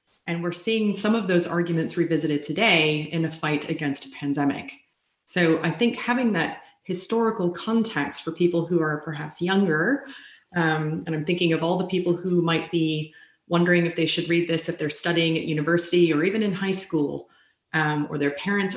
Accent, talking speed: American, 190 wpm